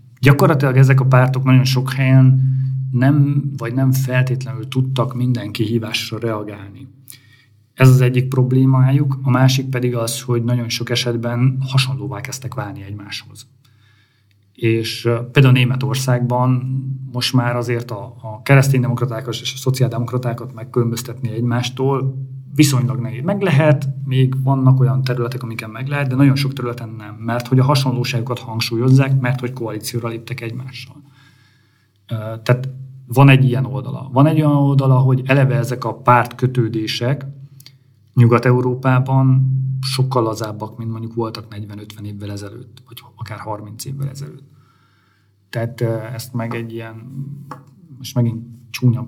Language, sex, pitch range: Hungarian, male, 115-130 Hz